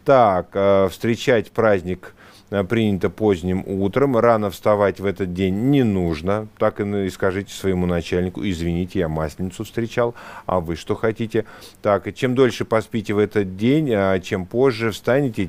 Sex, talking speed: male, 145 wpm